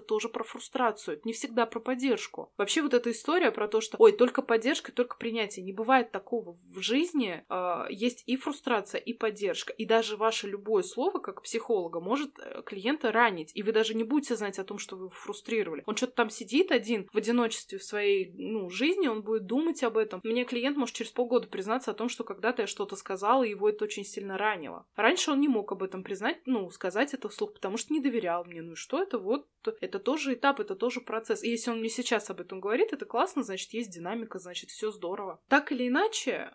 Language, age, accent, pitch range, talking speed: Russian, 20-39, native, 200-255 Hz, 215 wpm